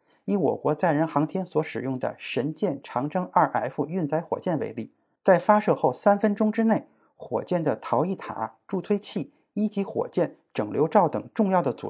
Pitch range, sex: 150-200 Hz, male